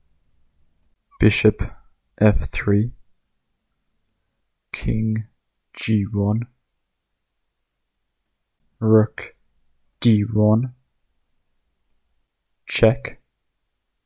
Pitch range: 75-110 Hz